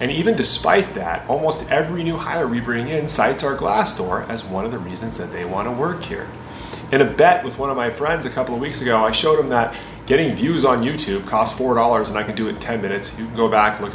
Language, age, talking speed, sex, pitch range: English, 30-49, 265 wpm, male, 105-145 Hz